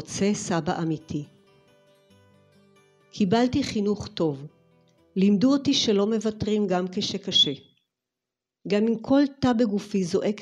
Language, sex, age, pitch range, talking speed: Hebrew, female, 50-69, 165-210 Hz, 105 wpm